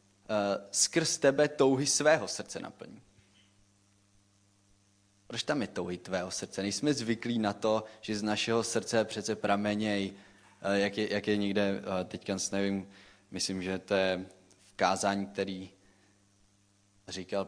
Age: 20-39